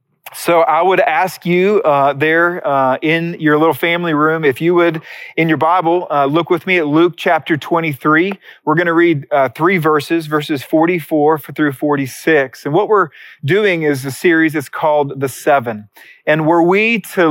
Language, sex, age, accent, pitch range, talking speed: English, male, 40-59, American, 140-175 Hz, 180 wpm